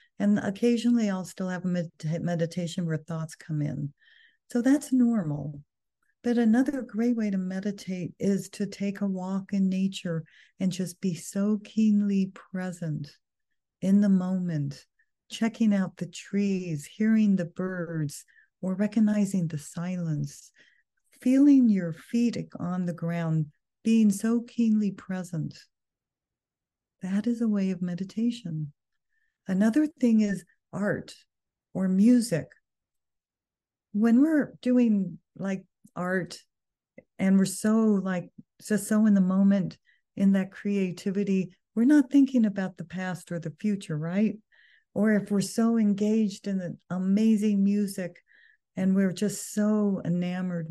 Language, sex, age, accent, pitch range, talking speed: English, female, 50-69, American, 175-215 Hz, 130 wpm